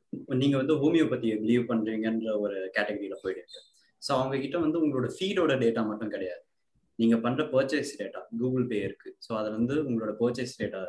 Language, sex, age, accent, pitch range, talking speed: Tamil, male, 20-39, native, 110-150 Hz, 160 wpm